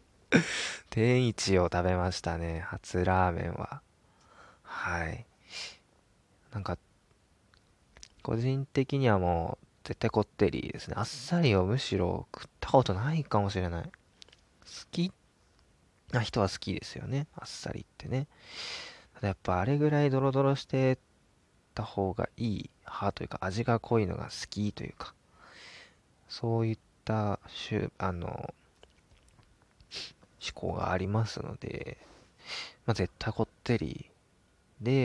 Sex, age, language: male, 20-39, Japanese